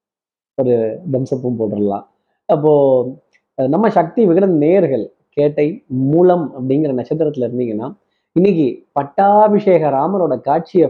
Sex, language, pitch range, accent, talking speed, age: male, Tamil, 130-195 Hz, native, 95 wpm, 20-39